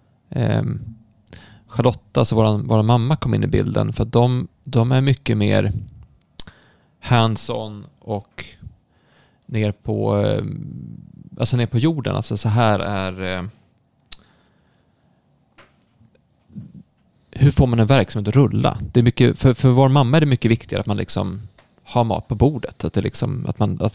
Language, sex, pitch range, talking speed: Swedish, male, 105-130 Hz, 150 wpm